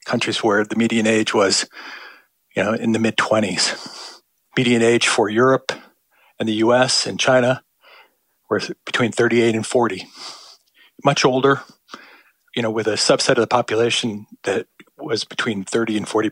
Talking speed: 155 wpm